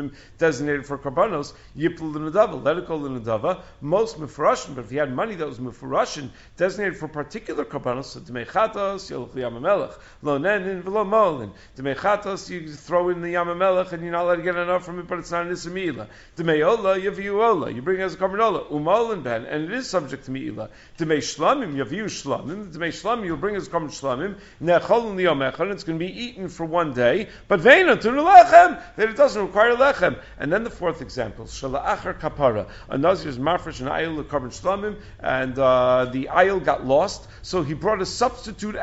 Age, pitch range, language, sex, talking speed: 50-69, 140-190 Hz, English, male, 185 wpm